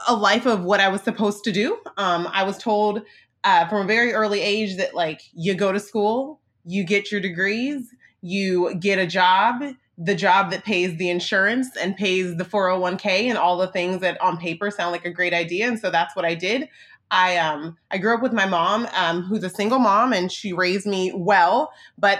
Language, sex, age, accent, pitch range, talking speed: English, female, 20-39, American, 185-240 Hz, 215 wpm